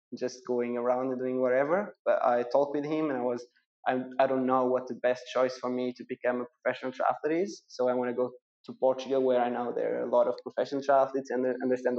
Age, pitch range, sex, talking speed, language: 20-39, 125-135 Hz, male, 245 wpm, English